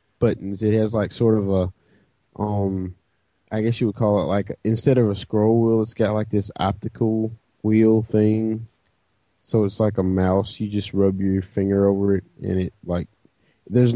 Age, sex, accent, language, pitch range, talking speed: 20-39, male, American, English, 95-115 Hz, 185 wpm